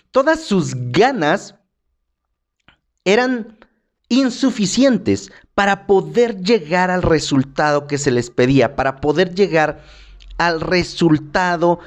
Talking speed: 95 wpm